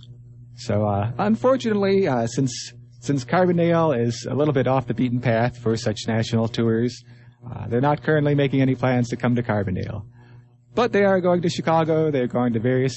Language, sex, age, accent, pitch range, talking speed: English, male, 30-49, American, 120-145 Hz, 185 wpm